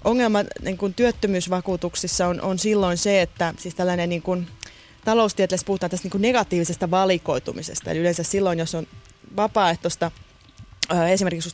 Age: 20-39